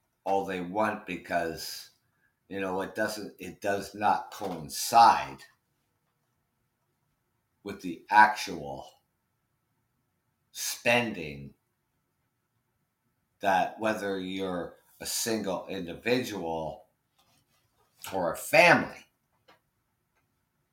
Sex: male